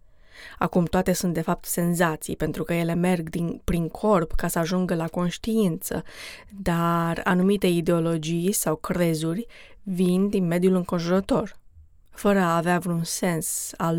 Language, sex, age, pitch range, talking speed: Romanian, female, 20-39, 170-195 Hz, 135 wpm